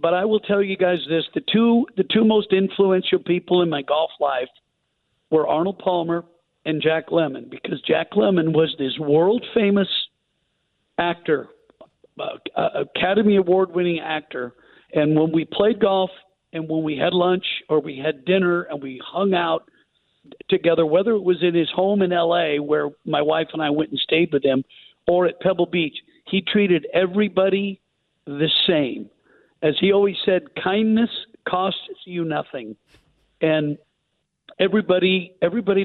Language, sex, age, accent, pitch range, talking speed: English, male, 50-69, American, 155-195 Hz, 155 wpm